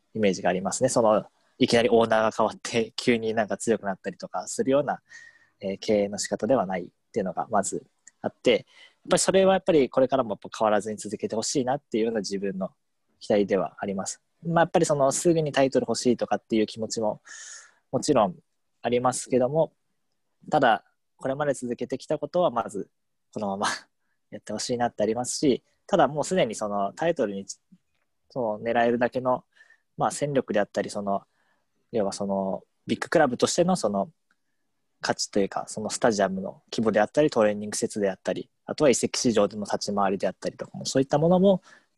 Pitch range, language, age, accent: 105-155 Hz, Japanese, 20-39, native